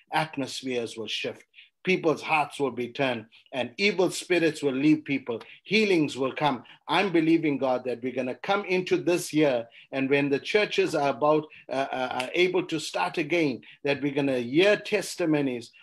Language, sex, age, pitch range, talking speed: English, male, 50-69, 135-175 Hz, 180 wpm